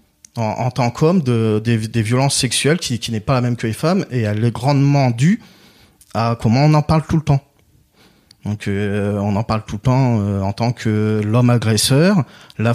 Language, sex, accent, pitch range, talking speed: French, male, French, 105-130 Hz, 215 wpm